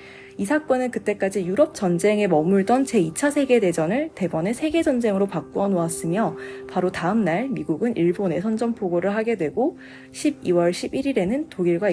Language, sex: Korean, female